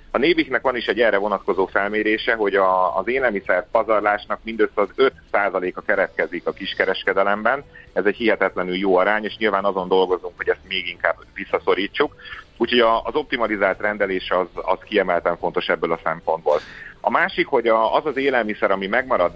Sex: male